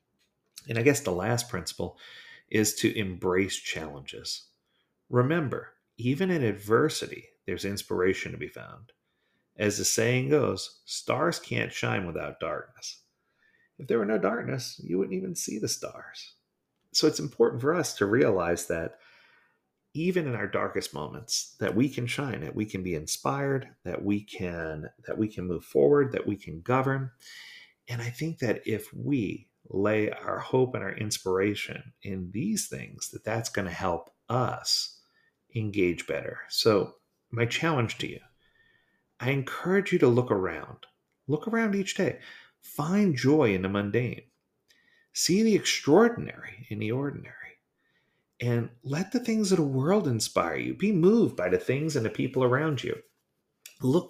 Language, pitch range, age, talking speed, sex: English, 105-155 Hz, 40-59, 155 wpm, male